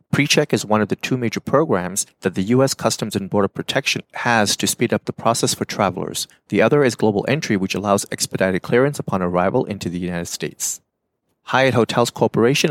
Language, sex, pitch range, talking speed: English, male, 95-120 Hz, 195 wpm